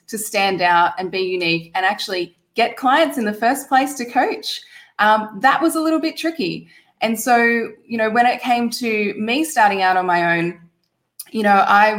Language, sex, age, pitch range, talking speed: English, female, 20-39, 185-230 Hz, 200 wpm